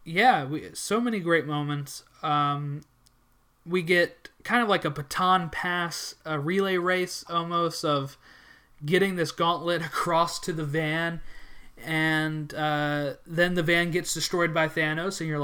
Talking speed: 150 wpm